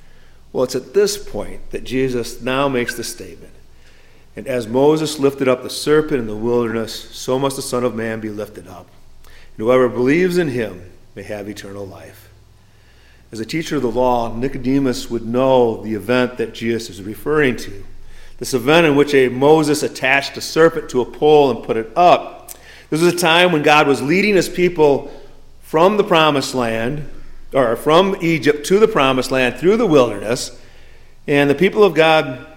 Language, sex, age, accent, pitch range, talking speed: English, male, 40-59, American, 115-150 Hz, 185 wpm